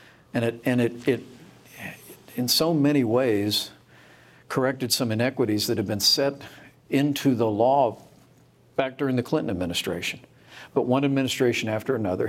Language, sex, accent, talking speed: English, male, American, 135 wpm